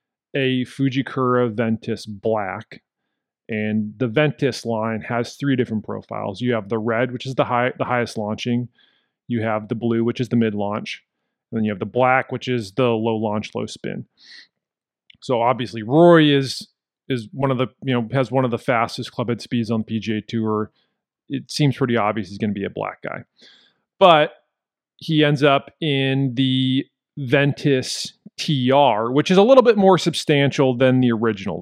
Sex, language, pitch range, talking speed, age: male, English, 115-150 Hz, 180 wpm, 30-49